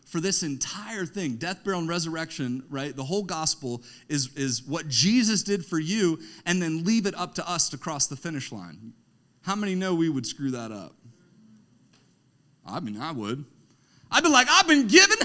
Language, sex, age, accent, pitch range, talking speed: English, male, 40-59, American, 145-230 Hz, 195 wpm